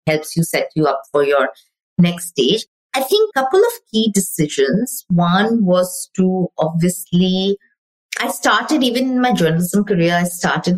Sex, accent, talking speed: female, Indian, 160 wpm